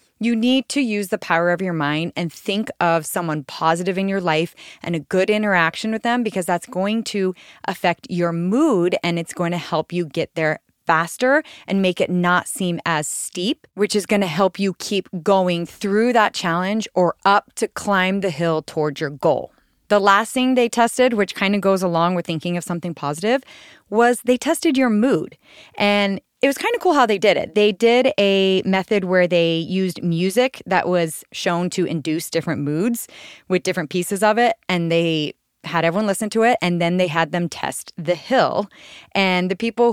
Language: English